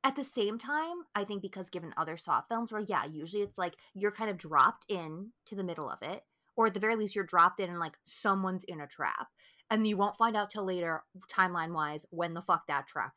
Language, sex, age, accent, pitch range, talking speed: English, female, 20-39, American, 170-235 Hz, 245 wpm